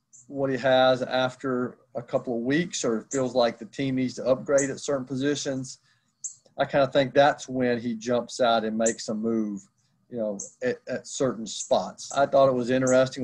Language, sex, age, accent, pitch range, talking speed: English, male, 40-59, American, 120-135 Hz, 200 wpm